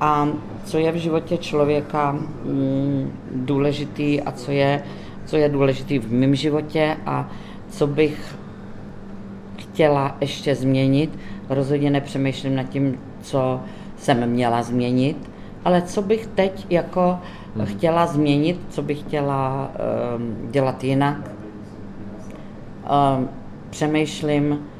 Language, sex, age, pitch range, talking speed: Czech, female, 40-59, 120-145 Hz, 100 wpm